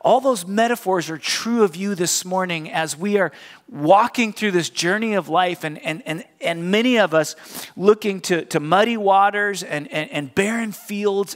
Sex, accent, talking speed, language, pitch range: male, American, 185 wpm, English, 170-230 Hz